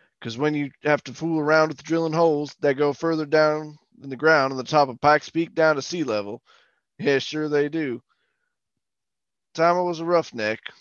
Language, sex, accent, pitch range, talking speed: English, male, American, 130-165 Hz, 200 wpm